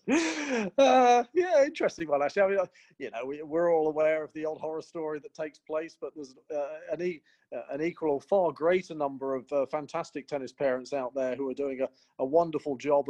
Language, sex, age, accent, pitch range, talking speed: English, male, 40-59, British, 135-165 Hz, 225 wpm